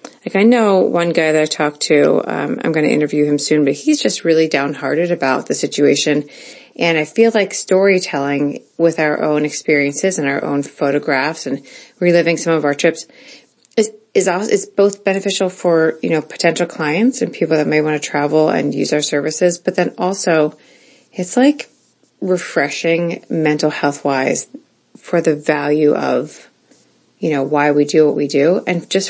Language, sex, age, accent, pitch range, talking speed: English, female, 30-49, American, 150-180 Hz, 180 wpm